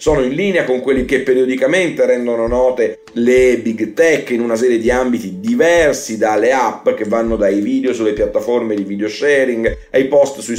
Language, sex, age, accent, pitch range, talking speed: Italian, male, 40-59, native, 120-170 Hz, 180 wpm